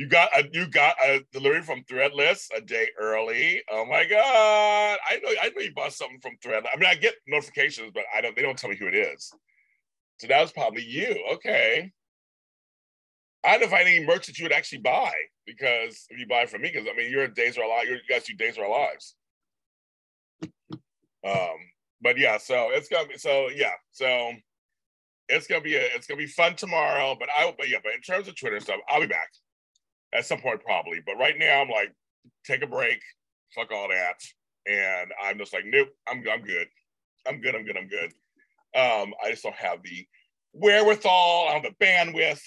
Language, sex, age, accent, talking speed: English, male, 40-59, American, 210 wpm